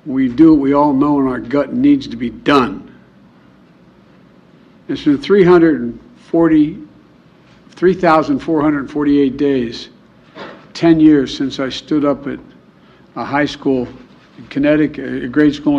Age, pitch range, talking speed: 60-79, 135-180 Hz, 125 wpm